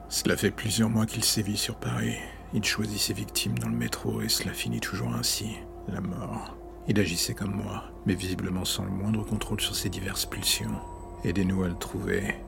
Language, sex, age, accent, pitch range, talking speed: French, male, 50-69, French, 90-105 Hz, 190 wpm